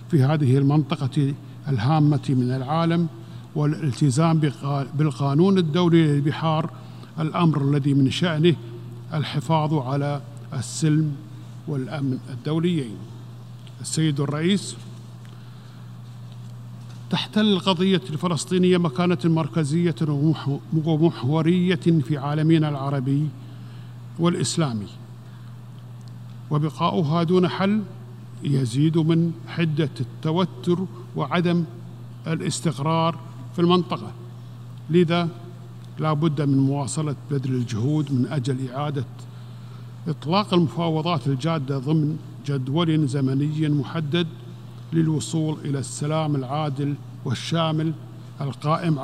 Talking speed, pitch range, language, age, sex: 80 wpm, 125-160 Hz, Arabic, 50-69, male